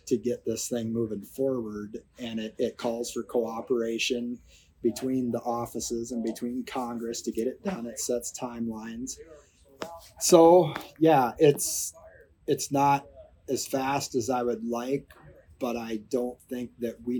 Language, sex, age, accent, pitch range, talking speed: English, male, 30-49, American, 110-125 Hz, 145 wpm